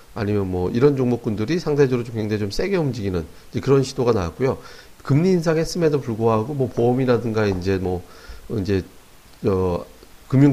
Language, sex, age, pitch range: Korean, male, 40-59, 105-145 Hz